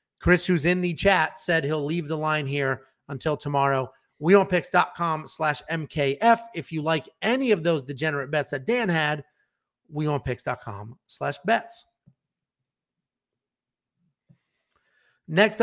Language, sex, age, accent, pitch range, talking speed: English, male, 30-49, American, 145-200 Hz, 120 wpm